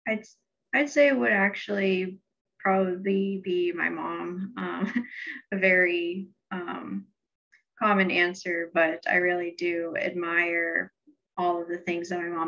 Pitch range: 170-185 Hz